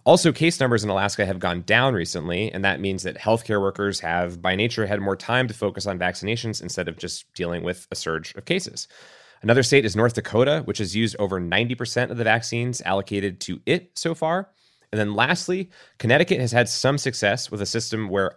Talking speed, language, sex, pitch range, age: 210 wpm, English, male, 90-115 Hz, 30-49